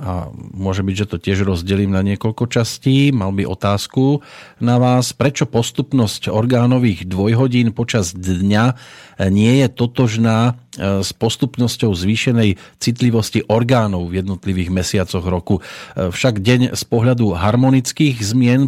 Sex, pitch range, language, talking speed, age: male, 100-125 Hz, Slovak, 125 wpm, 40-59